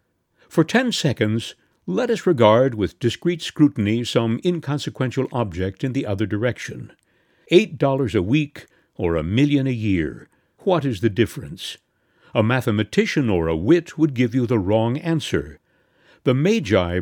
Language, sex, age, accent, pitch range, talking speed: English, male, 60-79, American, 105-155 Hz, 150 wpm